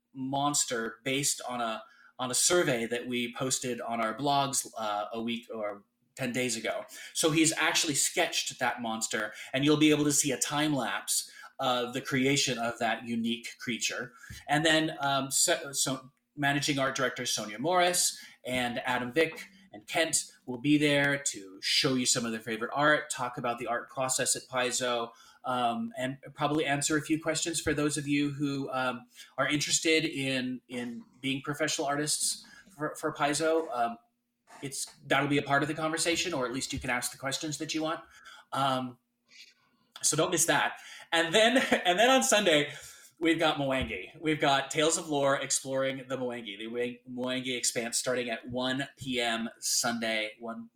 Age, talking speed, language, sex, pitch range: 30-49, 175 wpm, English, male, 120-155 Hz